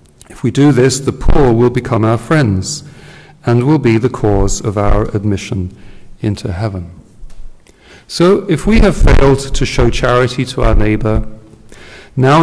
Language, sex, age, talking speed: English, male, 40-59, 150 wpm